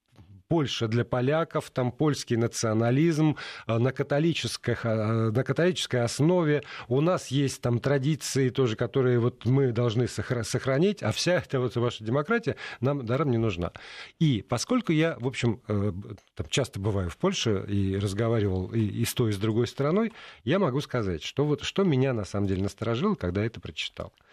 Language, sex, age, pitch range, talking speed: Russian, male, 40-59, 95-135 Hz, 170 wpm